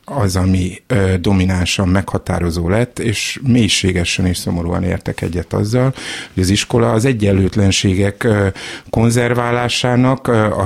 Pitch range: 95-120 Hz